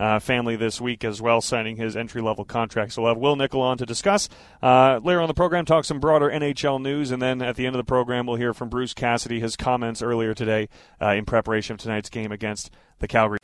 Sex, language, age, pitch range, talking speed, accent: male, English, 30-49, 120-145 Hz, 240 wpm, American